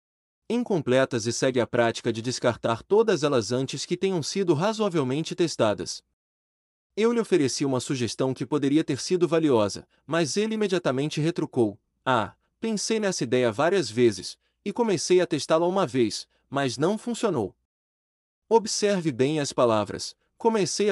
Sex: male